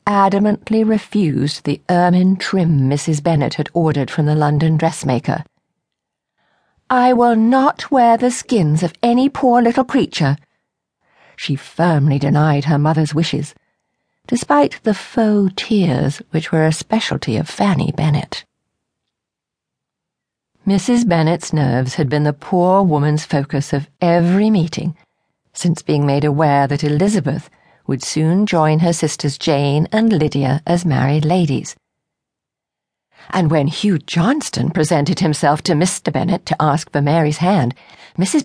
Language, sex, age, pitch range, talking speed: English, female, 50-69, 150-205 Hz, 135 wpm